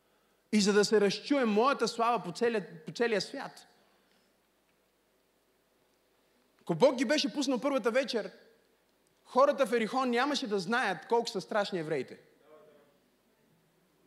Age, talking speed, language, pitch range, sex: 30-49, 125 wpm, Bulgarian, 190-270 Hz, male